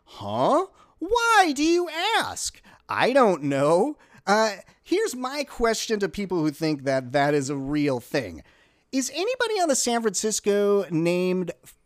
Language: English